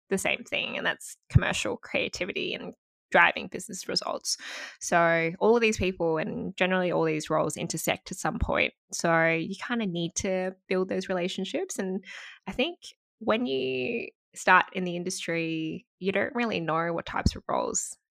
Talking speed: 170 wpm